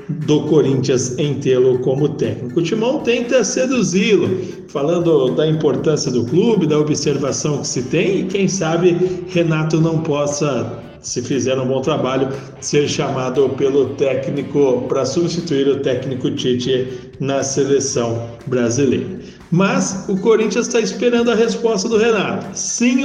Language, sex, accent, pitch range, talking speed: Portuguese, male, Brazilian, 140-200 Hz, 140 wpm